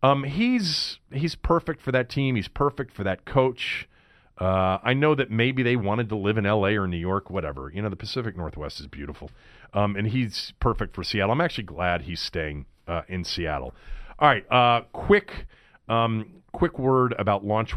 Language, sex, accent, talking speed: English, male, American, 195 wpm